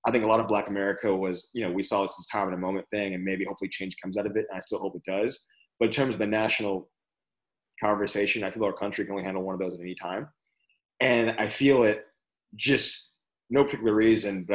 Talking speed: 255 wpm